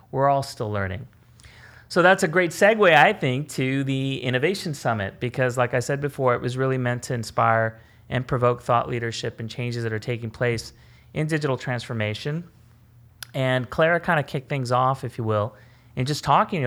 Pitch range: 115-140 Hz